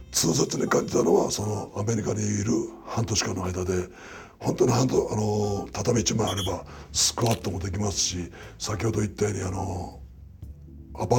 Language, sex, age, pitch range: Japanese, male, 60-79, 85-105 Hz